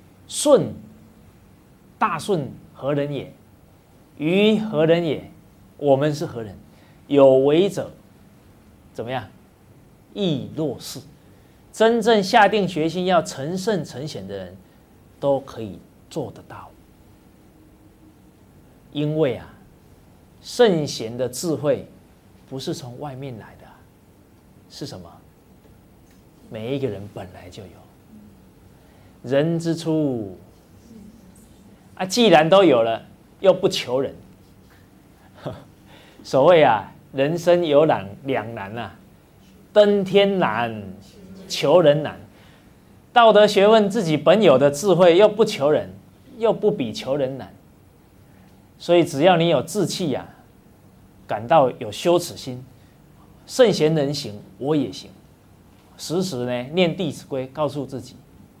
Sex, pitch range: male, 105-175 Hz